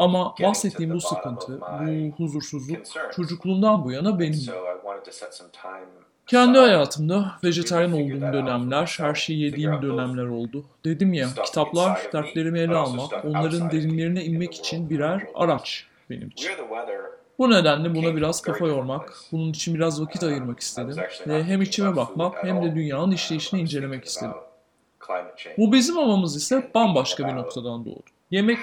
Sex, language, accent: male, Turkish, native